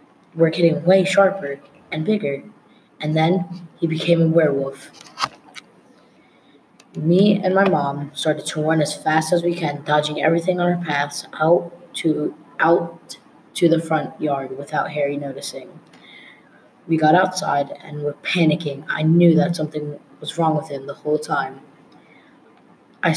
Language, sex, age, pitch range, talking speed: English, female, 20-39, 145-175 Hz, 145 wpm